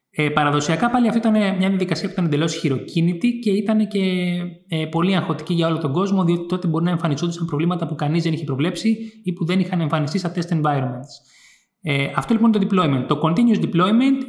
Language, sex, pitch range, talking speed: Greek, male, 145-195 Hz, 195 wpm